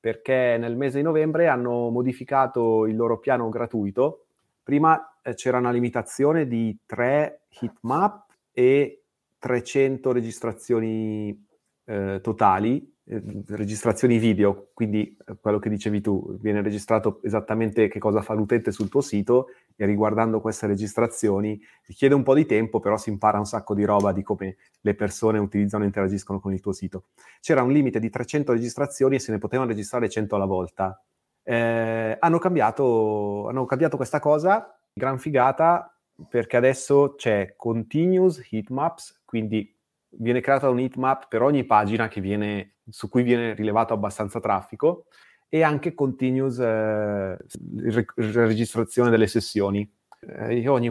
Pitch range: 105-130 Hz